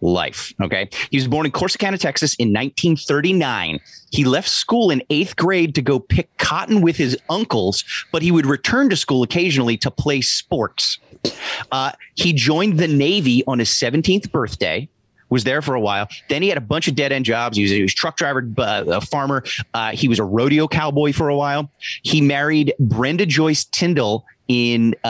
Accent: American